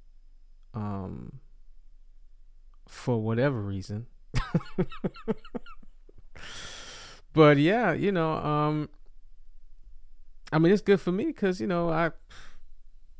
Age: 20-39